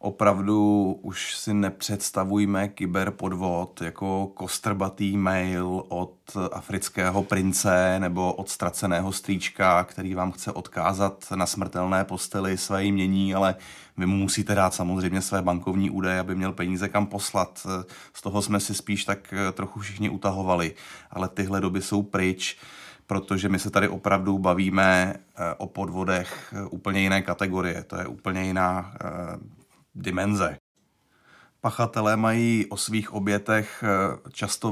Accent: native